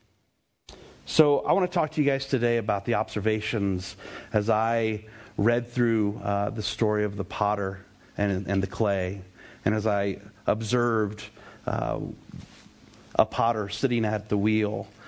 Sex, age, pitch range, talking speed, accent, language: male, 40-59, 100-120 Hz, 145 wpm, American, English